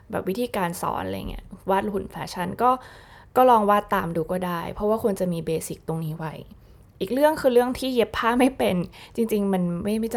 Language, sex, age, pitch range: Thai, female, 20-39, 175-220 Hz